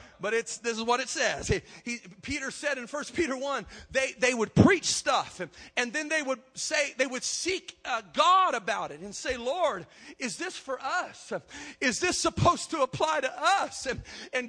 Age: 40-59